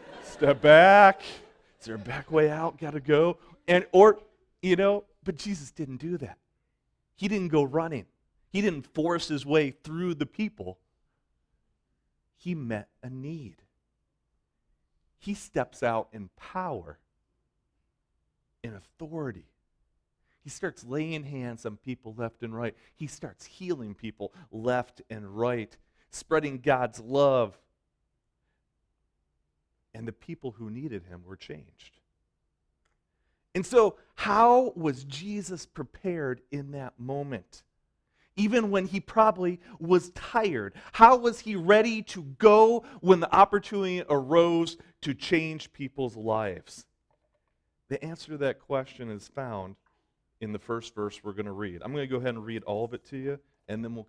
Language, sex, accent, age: English, male, American, 40-59